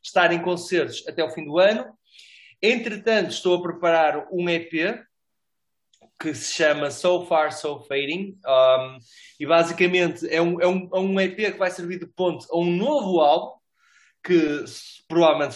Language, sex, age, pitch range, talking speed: Portuguese, male, 20-39, 145-190 Hz, 160 wpm